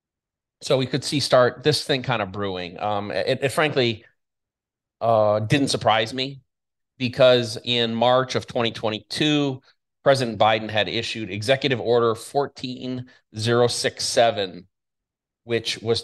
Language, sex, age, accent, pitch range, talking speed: English, male, 30-49, American, 110-130 Hz, 120 wpm